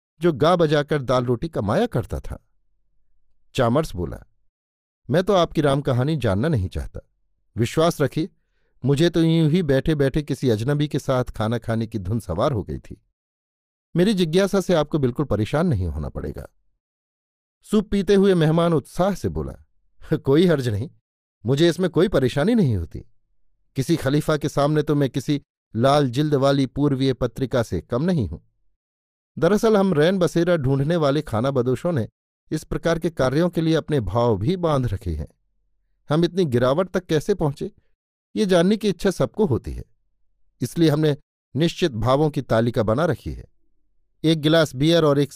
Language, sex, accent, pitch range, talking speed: Hindi, male, native, 115-165 Hz, 165 wpm